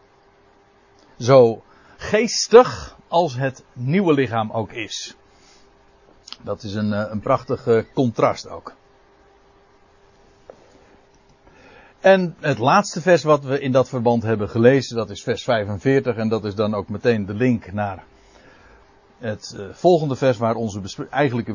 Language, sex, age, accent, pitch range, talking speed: Dutch, male, 60-79, Dutch, 110-165 Hz, 125 wpm